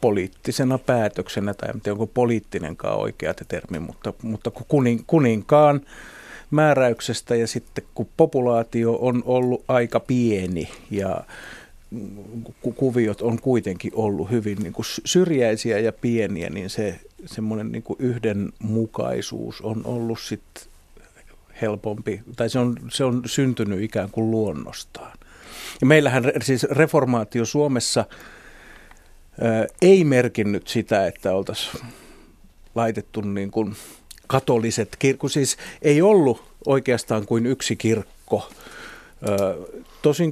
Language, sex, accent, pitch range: Finnish, male, native, 105-130 Hz